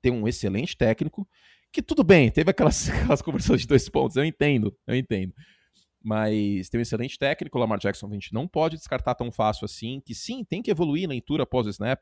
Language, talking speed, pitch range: Portuguese, 225 wpm, 110-155 Hz